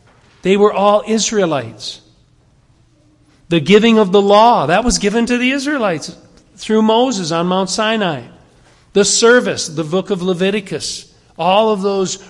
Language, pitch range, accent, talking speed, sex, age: English, 140-215 Hz, American, 140 wpm, male, 50-69